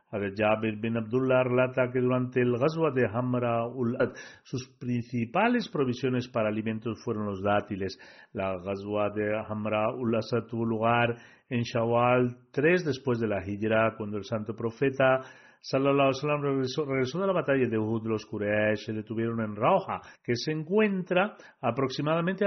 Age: 40-59